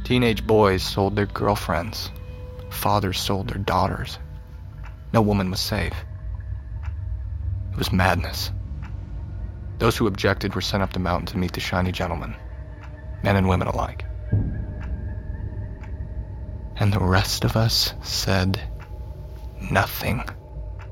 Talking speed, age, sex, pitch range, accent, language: 115 wpm, 30-49, male, 90-100 Hz, American, English